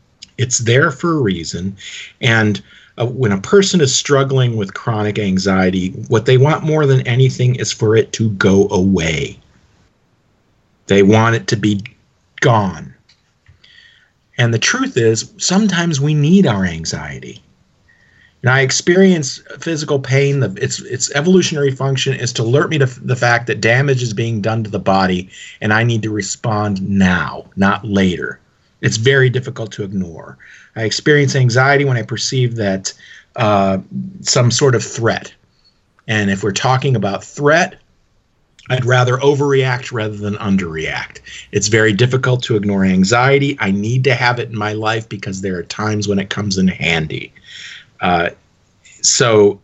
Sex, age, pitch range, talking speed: male, 50-69, 100-135 Hz, 155 wpm